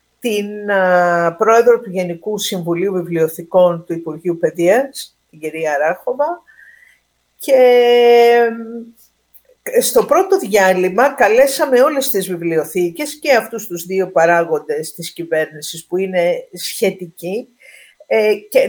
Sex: female